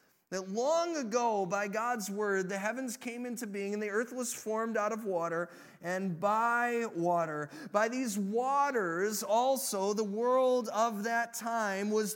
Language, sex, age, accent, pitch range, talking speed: English, male, 30-49, American, 175-225 Hz, 160 wpm